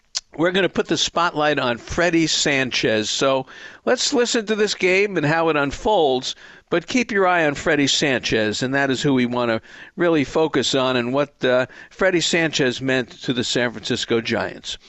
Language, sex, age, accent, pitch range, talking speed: English, male, 50-69, American, 135-180 Hz, 190 wpm